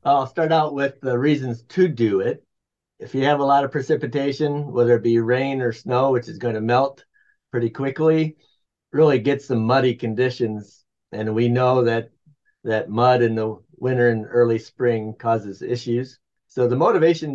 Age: 50-69